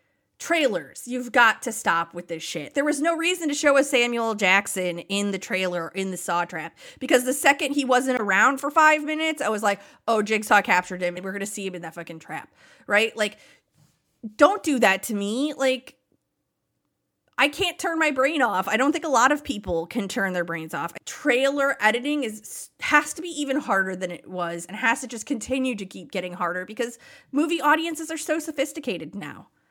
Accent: American